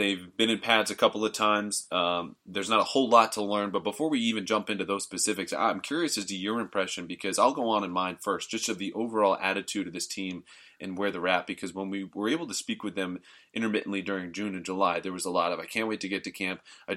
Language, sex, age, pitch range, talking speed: English, male, 30-49, 95-110 Hz, 270 wpm